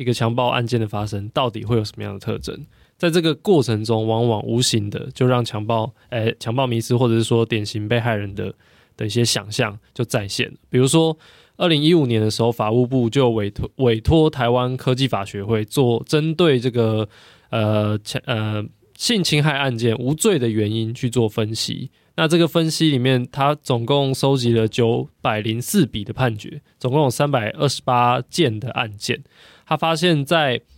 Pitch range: 115-155 Hz